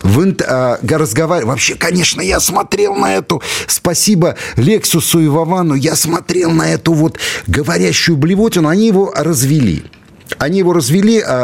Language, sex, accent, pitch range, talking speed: Russian, male, native, 95-155 Hz, 135 wpm